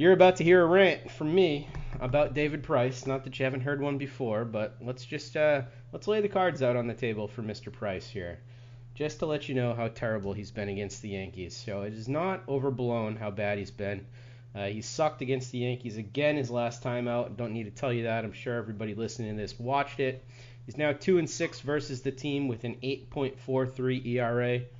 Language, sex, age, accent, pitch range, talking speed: English, male, 30-49, American, 115-140 Hz, 225 wpm